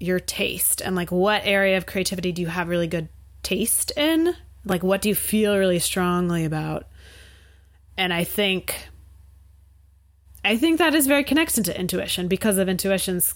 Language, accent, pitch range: English, American, 150-205 Hz